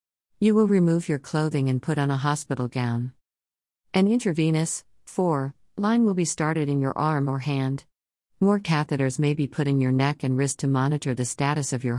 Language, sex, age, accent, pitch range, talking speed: English, female, 50-69, American, 130-155 Hz, 195 wpm